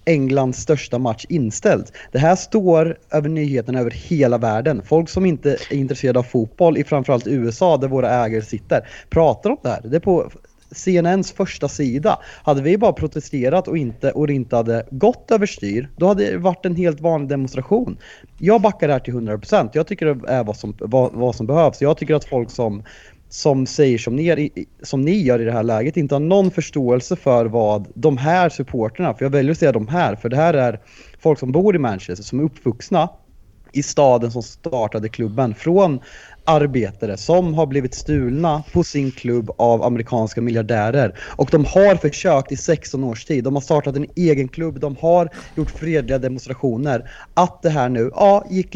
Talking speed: 190 wpm